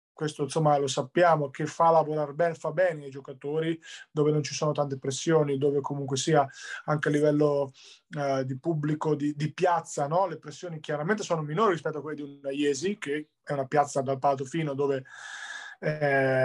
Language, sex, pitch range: Italian, male, 145-180 Hz